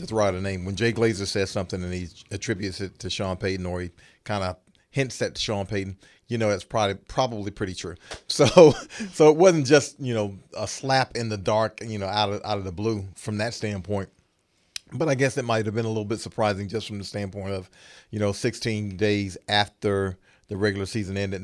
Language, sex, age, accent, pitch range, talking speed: English, male, 40-59, American, 95-115 Hz, 225 wpm